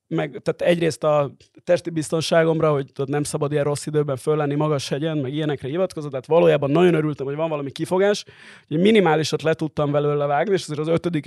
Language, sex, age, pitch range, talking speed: Hungarian, male, 30-49, 140-175 Hz, 185 wpm